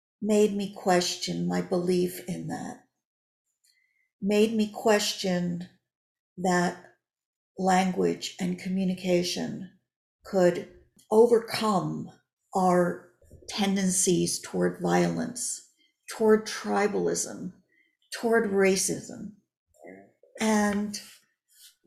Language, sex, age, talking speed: English, female, 50-69, 70 wpm